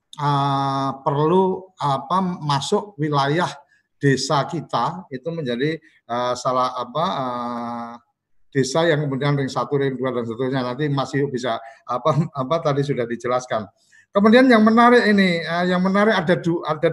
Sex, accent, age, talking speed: male, native, 50-69, 140 wpm